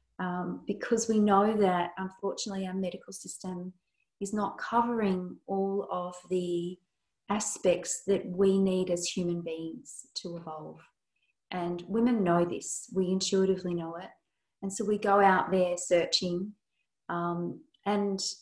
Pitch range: 180-205 Hz